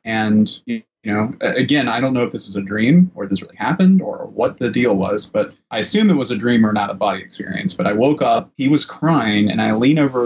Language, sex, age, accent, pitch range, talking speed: English, male, 20-39, American, 110-130 Hz, 255 wpm